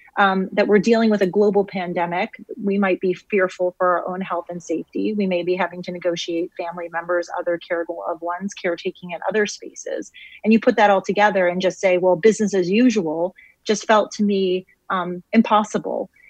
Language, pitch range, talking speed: English, 175-210 Hz, 195 wpm